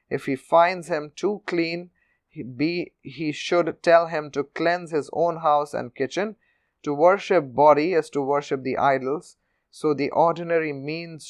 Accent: Indian